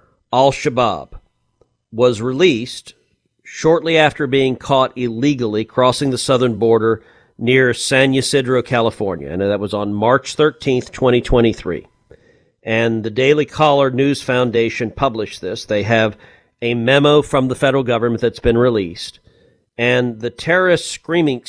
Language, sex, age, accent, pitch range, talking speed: English, male, 40-59, American, 120-145 Hz, 130 wpm